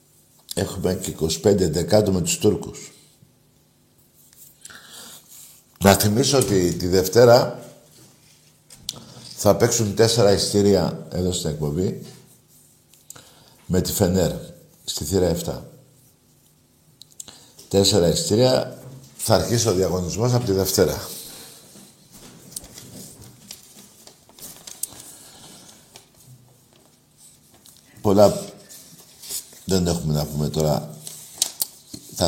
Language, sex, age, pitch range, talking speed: Greek, male, 60-79, 80-110 Hz, 75 wpm